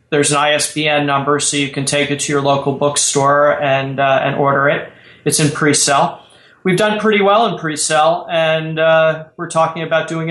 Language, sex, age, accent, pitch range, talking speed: English, male, 30-49, American, 140-160 Hz, 205 wpm